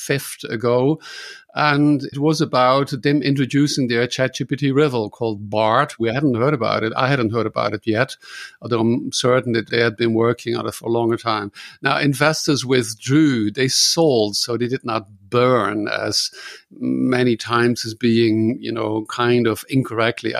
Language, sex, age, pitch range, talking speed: English, male, 50-69, 115-140 Hz, 170 wpm